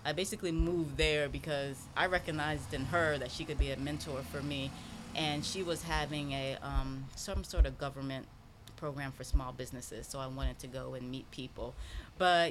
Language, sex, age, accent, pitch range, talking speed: English, female, 20-39, American, 135-165 Hz, 190 wpm